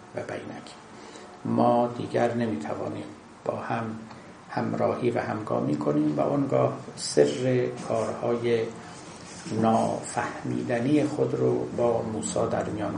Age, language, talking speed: 50-69, Persian, 100 wpm